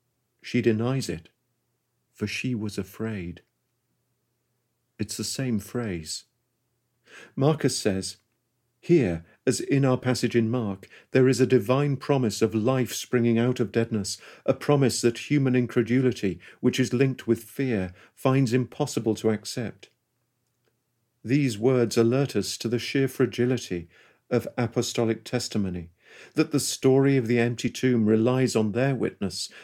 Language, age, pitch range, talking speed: English, 50-69, 110-130 Hz, 135 wpm